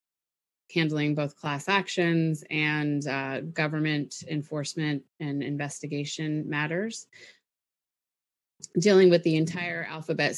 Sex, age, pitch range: female, 30-49, 145-165 Hz